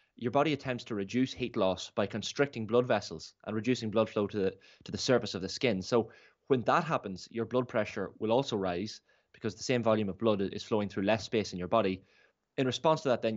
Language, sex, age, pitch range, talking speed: English, male, 20-39, 105-125 Hz, 235 wpm